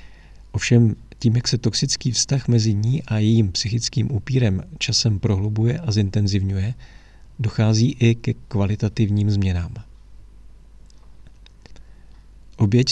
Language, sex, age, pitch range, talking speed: Czech, male, 50-69, 100-120 Hz, 100 wpm